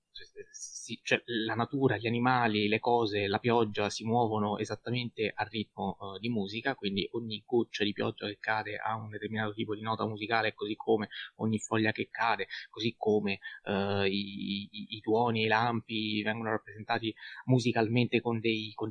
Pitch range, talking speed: 100-120 Hz, 170 wpm